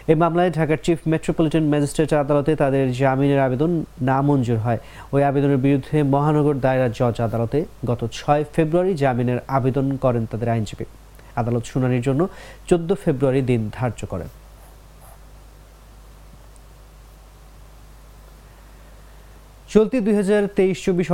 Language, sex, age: English, male, 30-49